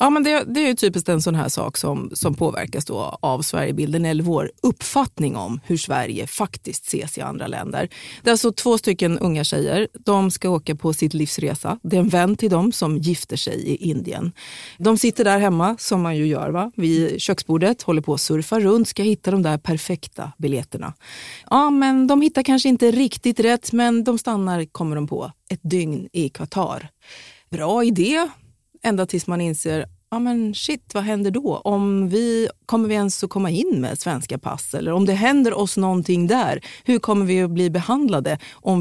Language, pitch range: Swedish, 155-220 Hz